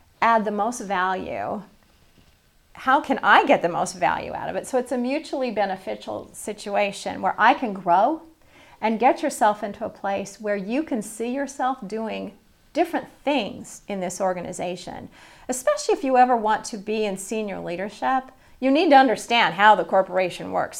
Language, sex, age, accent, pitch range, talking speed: English, female, 40-59, American, 185-250 Hz, 170 wpm